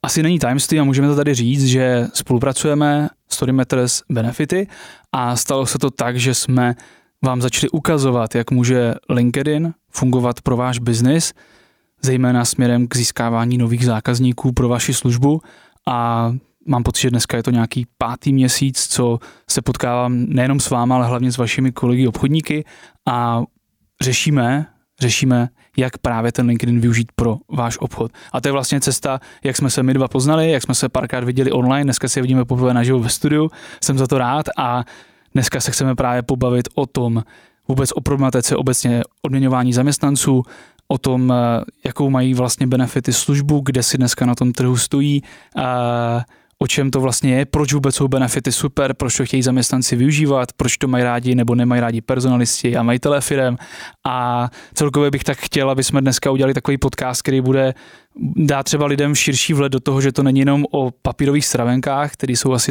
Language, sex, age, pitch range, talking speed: Czech, male, 20-39, 125-140 Hz, 180 wpm